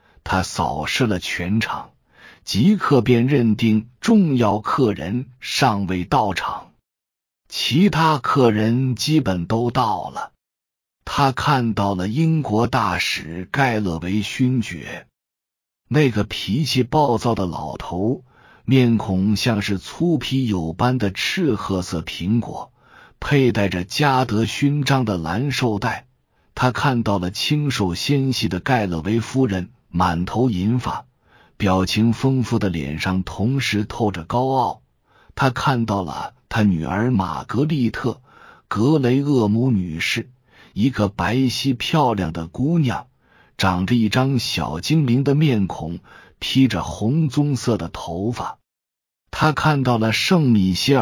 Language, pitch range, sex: Chinese, 95-130 Hz, male